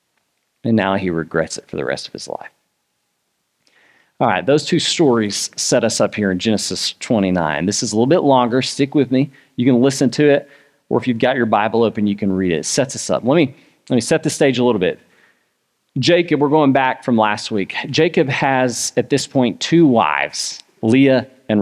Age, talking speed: 40-59, 215 wpm